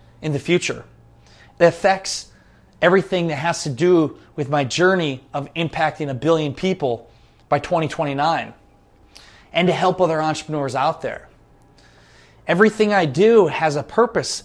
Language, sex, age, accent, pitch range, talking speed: English, male, 20-39, American, 145-185 Hz, 135 wpm